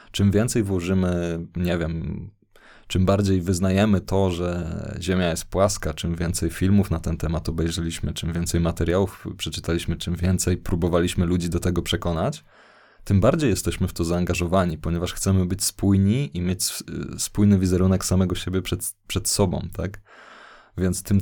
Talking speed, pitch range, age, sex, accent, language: 150 wpm, 85-100 Hz, 20-39, male, native, Polish